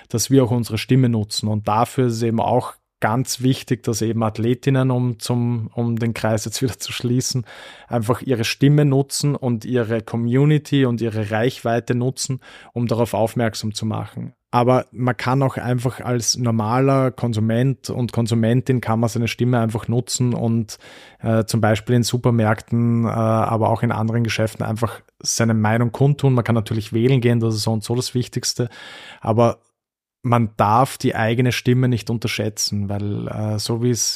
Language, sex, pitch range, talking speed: German, male, 110-125 Hz, 170 wpm